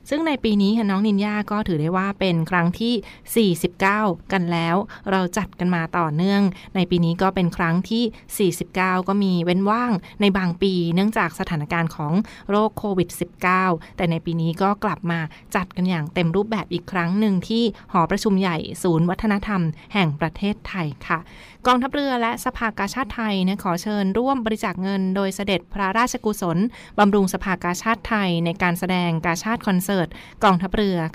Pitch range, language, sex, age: 175-210 Hz, Thai, female, 20-39